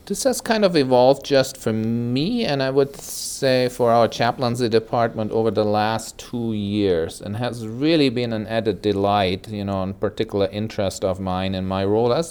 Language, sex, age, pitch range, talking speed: English, male, 40-59, 105-130 Hz, 190 wpm